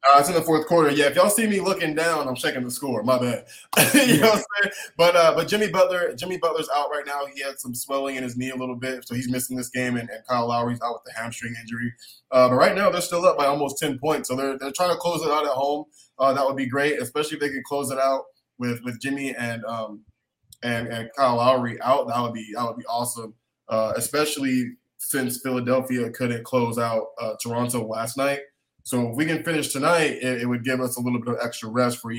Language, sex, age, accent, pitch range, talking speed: English, male, 20-39, American, 120-140 Hz, 255 wpm